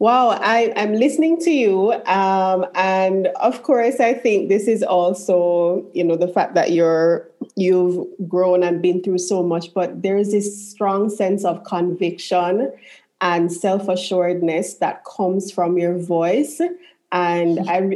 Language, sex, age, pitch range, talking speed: English, female, 20-39, 175-205 Hz, 145 wpm